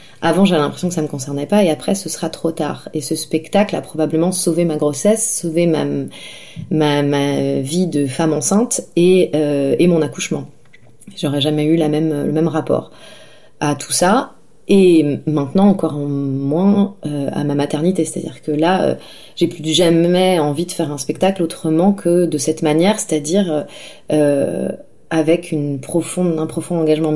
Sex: female